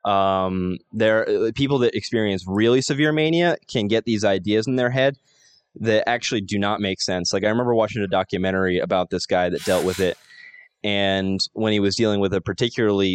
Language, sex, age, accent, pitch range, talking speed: English, male, 20-39, American, 100-125 Hz, 190 wpm